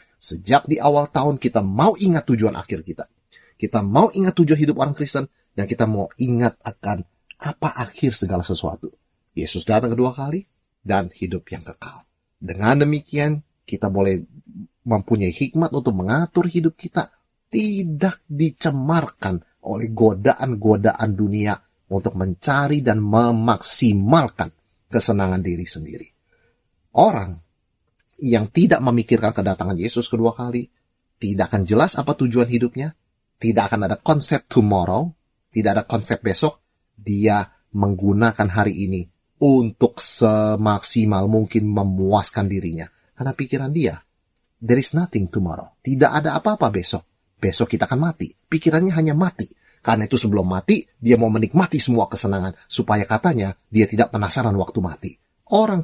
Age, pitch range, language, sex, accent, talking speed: 30-49, 100-140 Hz, Indonesian, male, native, 130 wpm